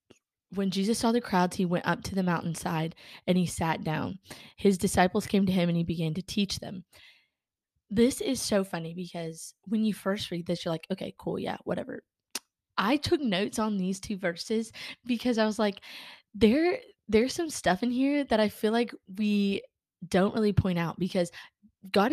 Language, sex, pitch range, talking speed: English, female, 175-220 Hz, 190 wpm